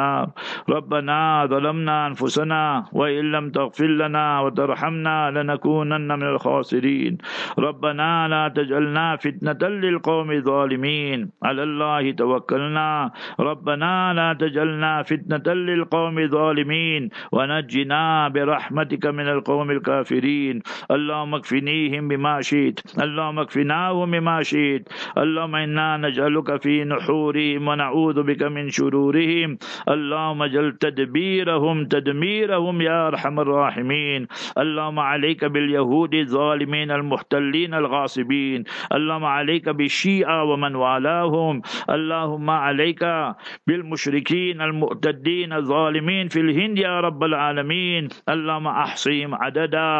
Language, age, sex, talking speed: English, 50-69, male, 90 wpm